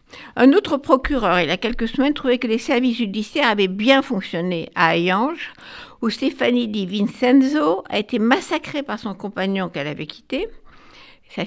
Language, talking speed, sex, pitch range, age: French, 170 wpm, female, 195-260 Hz, 60-79